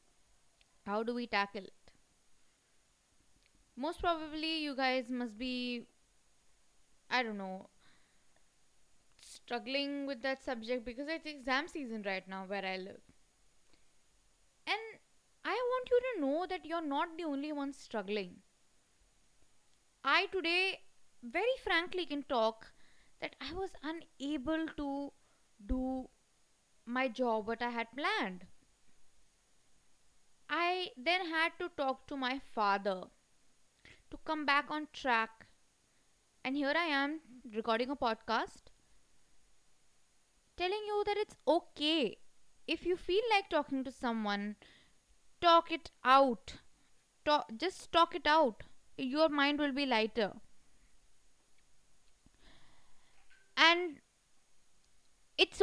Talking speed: 110 wpm